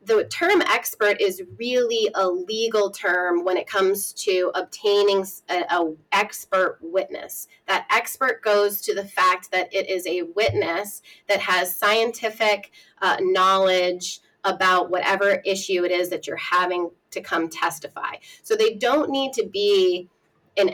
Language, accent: English, American